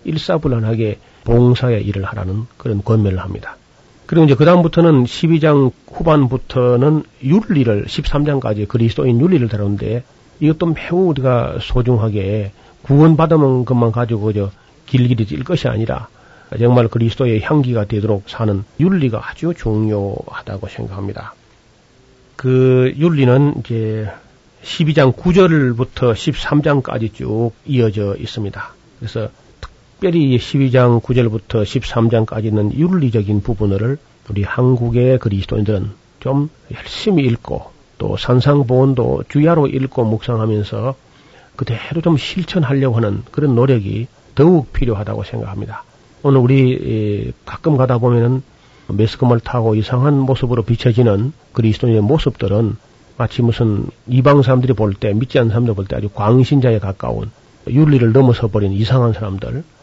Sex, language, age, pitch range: male, Korean, 40-59, 110-140 Hz